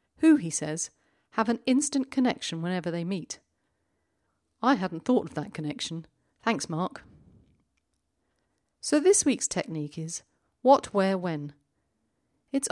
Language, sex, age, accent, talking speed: English, female, 40-59, British, 125 wpm